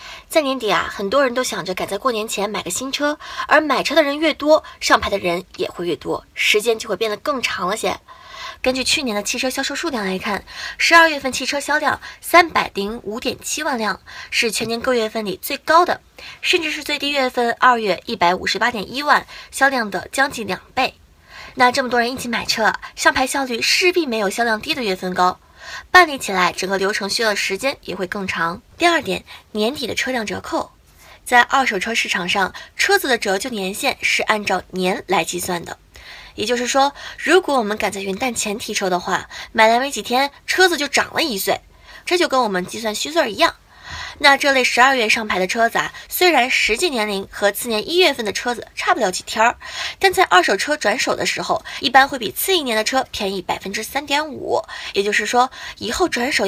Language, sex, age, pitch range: Chinese, female, 20-39, 210-290 Hz